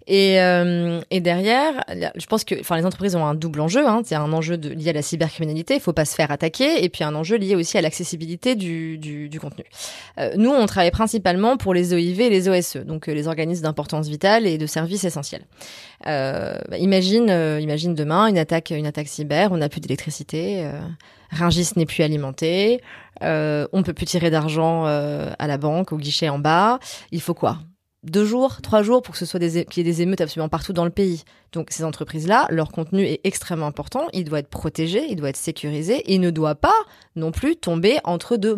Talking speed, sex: 225 wpm, female